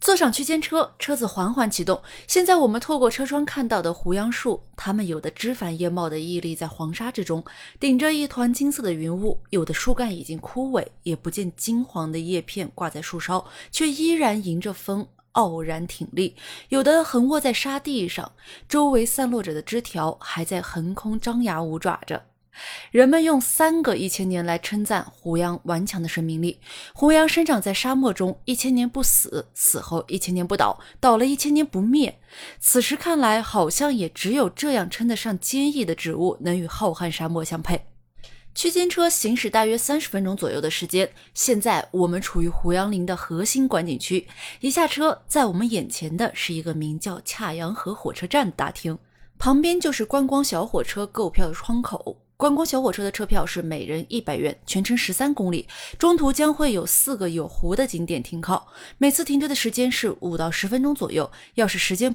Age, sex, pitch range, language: 20-39, female, 175-265 Hz, Chinese